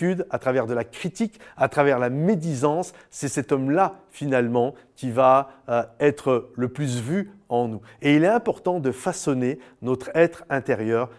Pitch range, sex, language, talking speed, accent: 130-175 Hz, male, French, 160 wpm, French